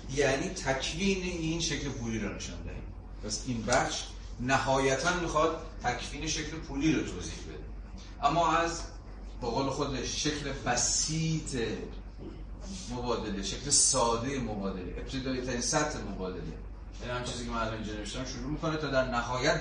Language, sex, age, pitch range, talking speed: Persian, male, 30-49, 105-135 Hz, 140 wpm